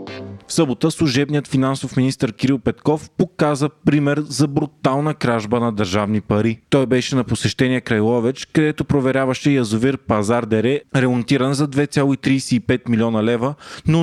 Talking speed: 135 wpm